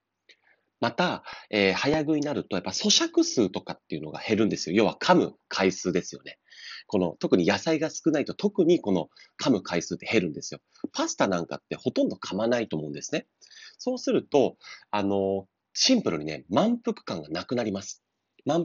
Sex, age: male, 40-59